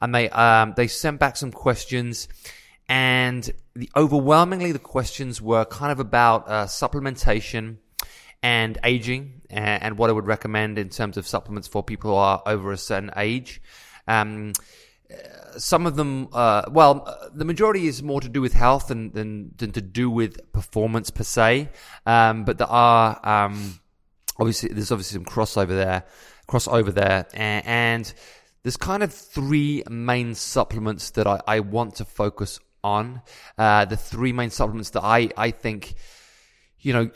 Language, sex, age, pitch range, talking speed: English, male, 20-39, 105-125 Hz, 165 wpm